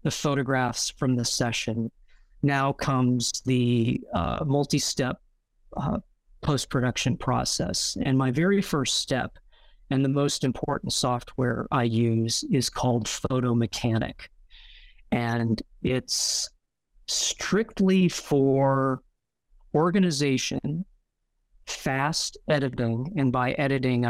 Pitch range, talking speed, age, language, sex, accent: 120-140 Hz, 95 wpm, 40-59, English, male, American